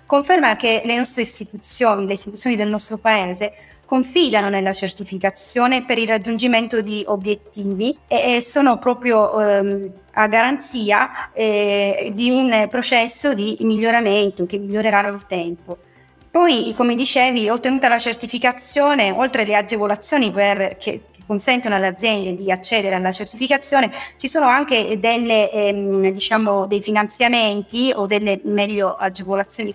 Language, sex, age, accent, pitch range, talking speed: Italian, female, 20-39, native, 200-245 Hz, 130 wpm